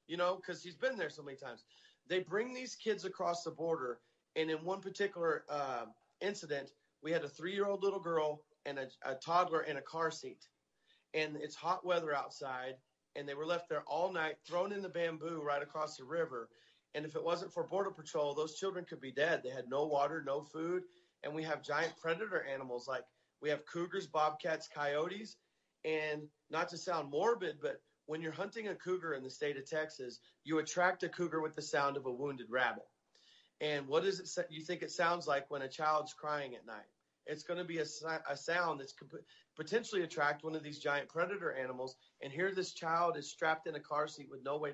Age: 30-49